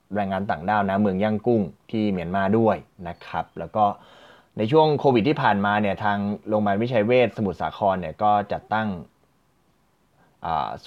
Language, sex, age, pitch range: Thai, male, 20-39, 100-130 Hz